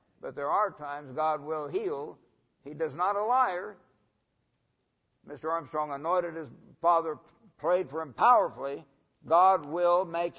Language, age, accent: English, 60-79, American